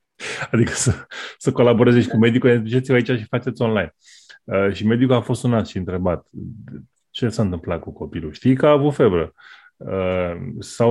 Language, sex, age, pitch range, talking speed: Romanian, male, 20-39, 95-125 Hz, 170 wpm